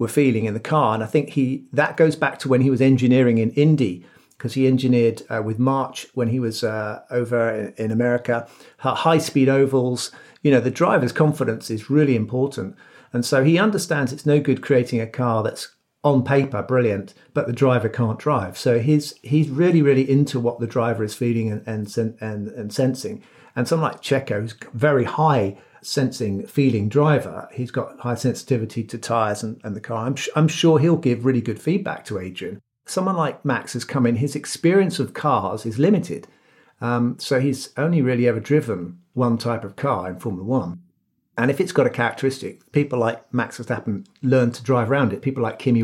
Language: English